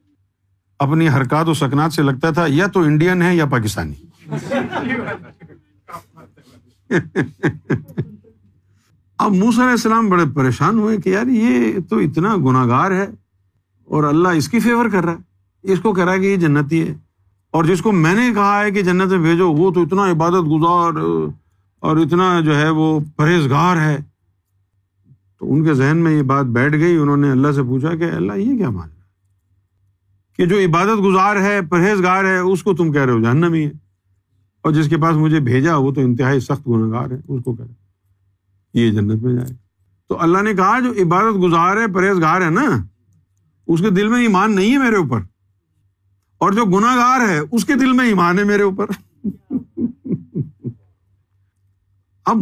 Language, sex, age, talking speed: Urdu, male, 50-69, 175 wpm